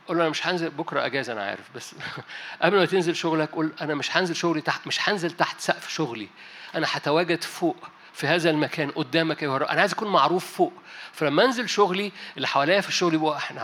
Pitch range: 155-190 Hz